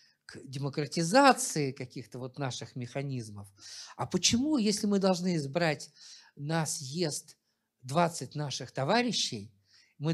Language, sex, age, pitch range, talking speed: Russian, male, 50-69, 130-195 Hz, 105 wpm